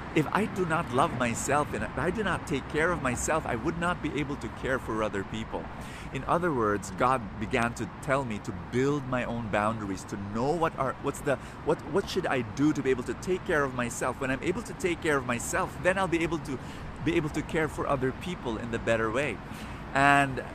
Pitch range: 115-165 Hz